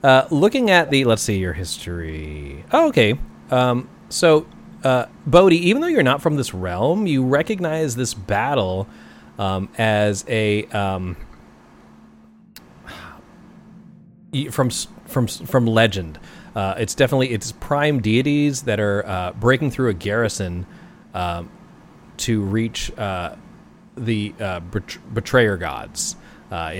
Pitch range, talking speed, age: 95-150 Hz, 125 wpm, 30-49